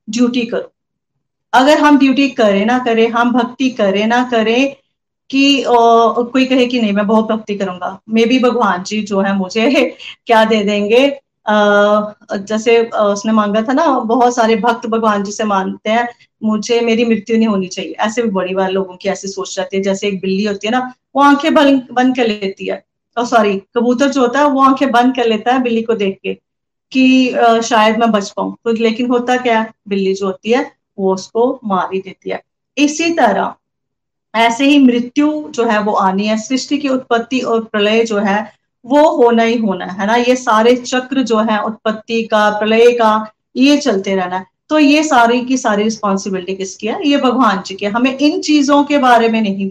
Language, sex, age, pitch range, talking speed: Hindi, female, 30-49, 205-250 Hz, 195 wpm